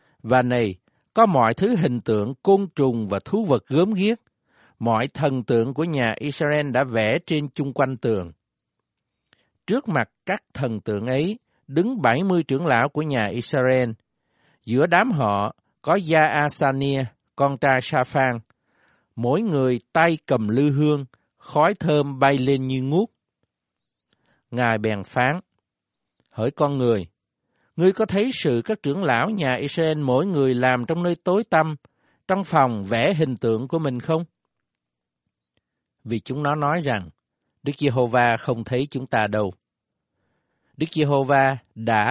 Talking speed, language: 150 wpm, Vietnamese